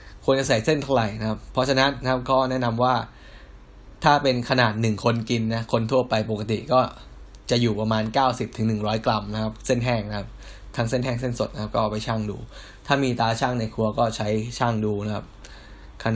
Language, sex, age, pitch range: Thai, male, 10-29, 110-130 Hz